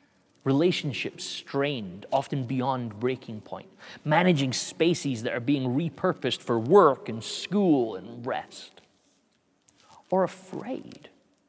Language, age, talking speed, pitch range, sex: English, 30-49, 105 wpm, 120-170 Hz, male